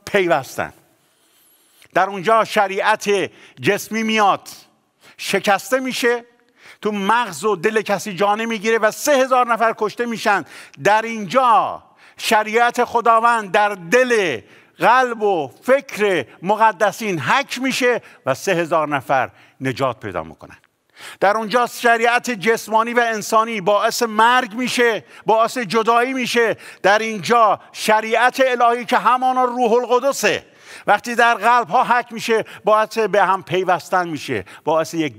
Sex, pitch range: male, 150-230 Hz